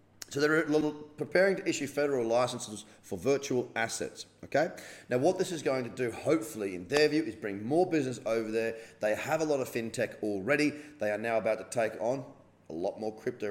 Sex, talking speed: male, 205 wpm